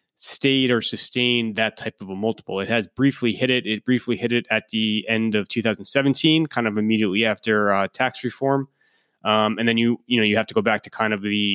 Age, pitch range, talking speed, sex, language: 20-39, 100-115 Hz, 230 wpm, male, English